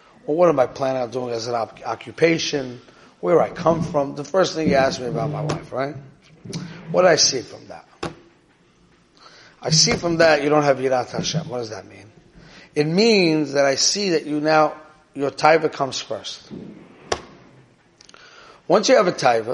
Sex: male